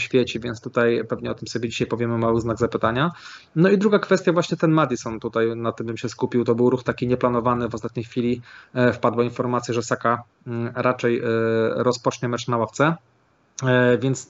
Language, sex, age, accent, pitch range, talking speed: Polish, male, 20-39, native, 120-140 Hz, 180 wpm